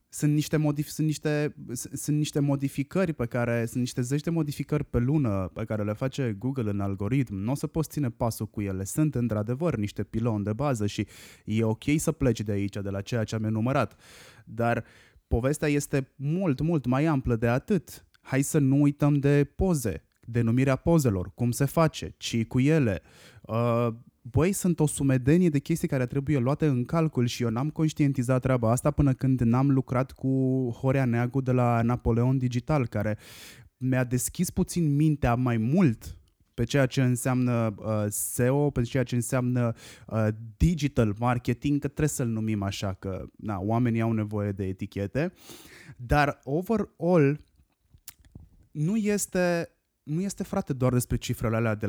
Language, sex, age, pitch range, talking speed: Romanian, male, 20-39, 110-145 Hz, 165 wpm